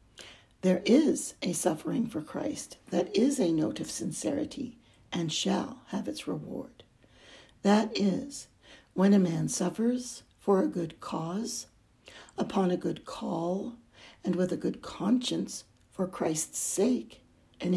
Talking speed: 135 wpm